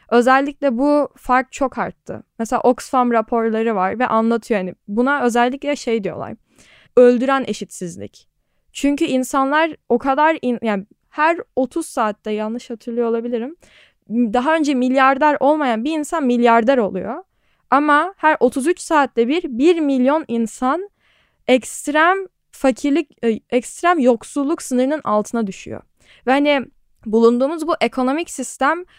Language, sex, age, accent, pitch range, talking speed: Turkish, female, 10-29, native, 235-290 Hz, 120 wpm